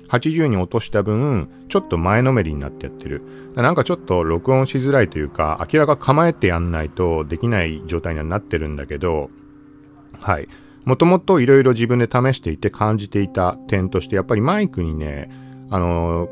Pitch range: 80-130 Hz